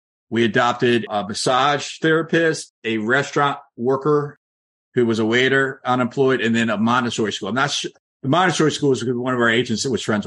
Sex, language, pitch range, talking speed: male, English, 115-150 Hz, 185 wpm